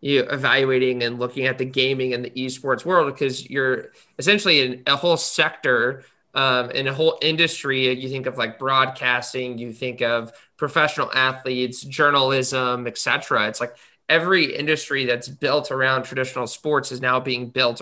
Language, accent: English, American